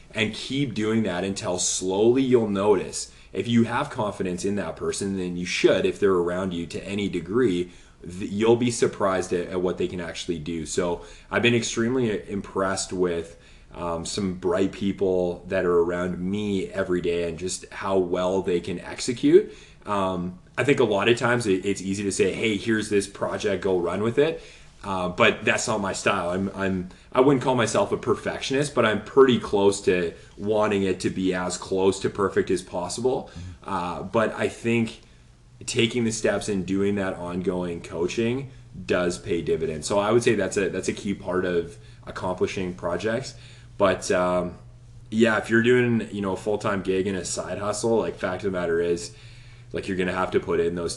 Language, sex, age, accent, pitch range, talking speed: English, male, 20-39, American, 90-115 Hz, 195 wpm